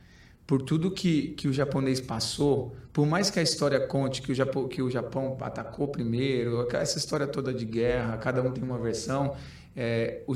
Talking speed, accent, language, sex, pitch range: 185 wpm, Brazilian, Portuguese, male, 120-140 Hz